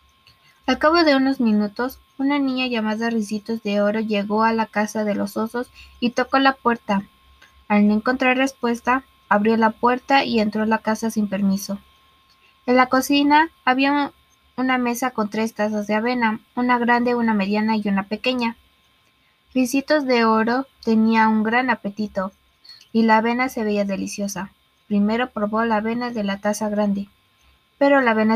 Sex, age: female, 20-39